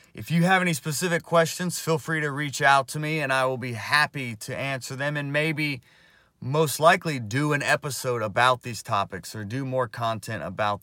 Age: 30-49